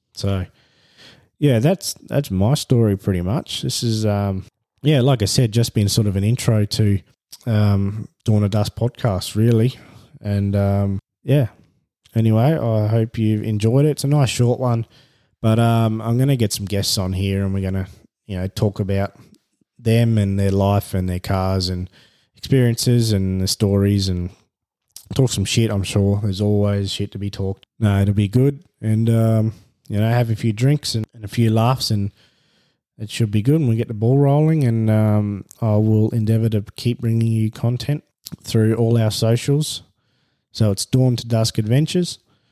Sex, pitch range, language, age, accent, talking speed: male, 105-120 Hz, English, 20-39, Australian, 185 wpm